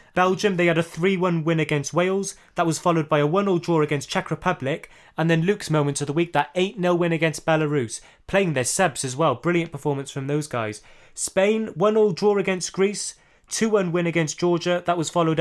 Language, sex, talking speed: English, male, 210 wpm